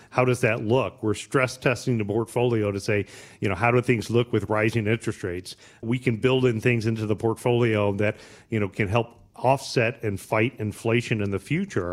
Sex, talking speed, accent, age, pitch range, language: male, 205 wpm, American, 40-59, 110-130 Hz, English